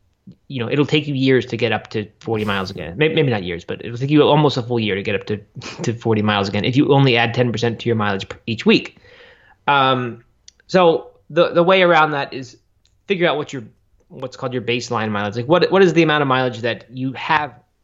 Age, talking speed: 20-39, 240 wpm